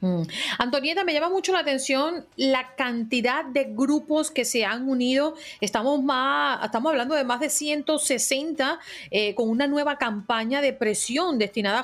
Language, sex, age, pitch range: Spanish, female, 40-59, 210-280 Hz